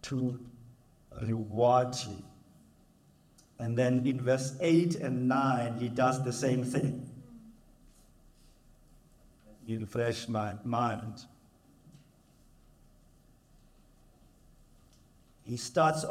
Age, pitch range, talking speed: 50-69, 120-150 Hz, 75 wpm